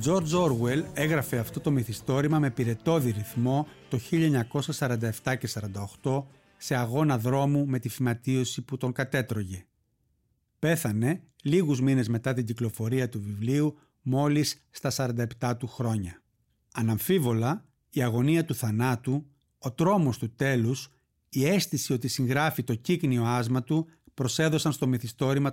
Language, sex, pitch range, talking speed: Greek, male, 120-145 Hz, 130 wpm